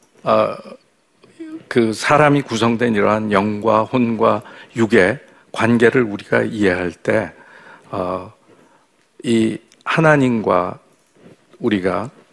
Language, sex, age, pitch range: Korean, male, 50-69, 105-135 Hz